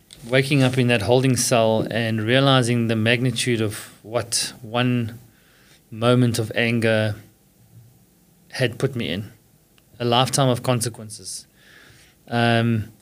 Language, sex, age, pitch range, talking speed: English, male, 20-39, 115-130 Hz, 115 wpm